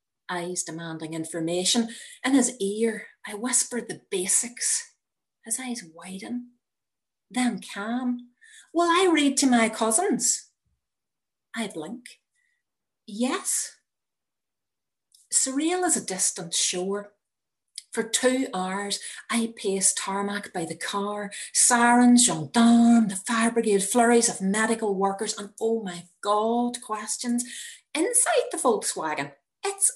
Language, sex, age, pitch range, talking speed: English, female, 40-59, 185-245 Hz, 110 wpm